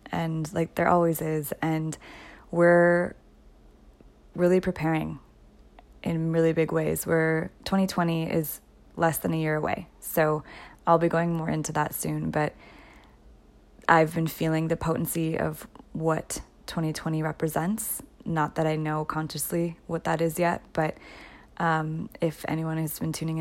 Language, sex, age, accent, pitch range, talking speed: English, female, 20-39, American, 155-170 Hz, 145 wpm